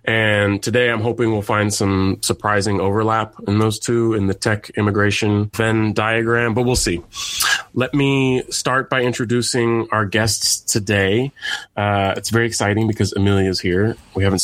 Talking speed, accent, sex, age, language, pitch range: 160 wpm, American, male, 20-39, English, 95-115 Hz